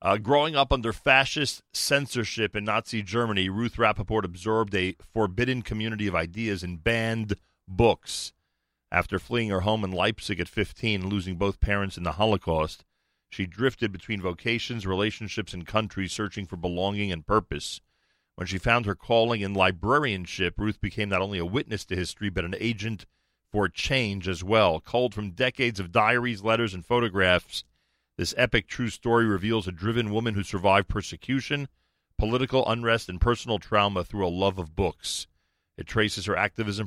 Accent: American